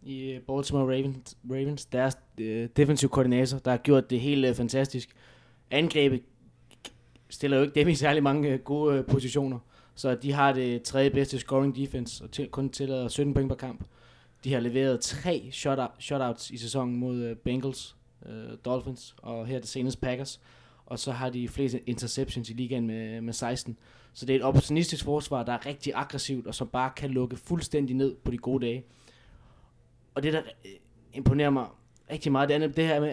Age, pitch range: 20-39, 125-145 Hz